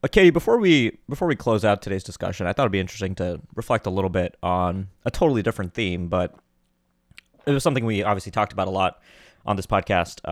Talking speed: 215 wpm